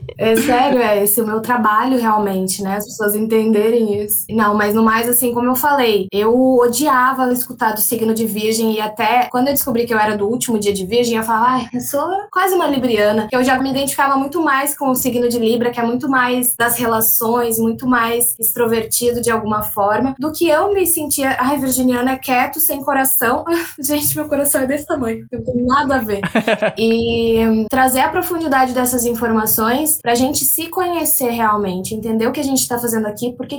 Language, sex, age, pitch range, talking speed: Portuguese, female, 10-29, 220-260 Hz, 205 wpm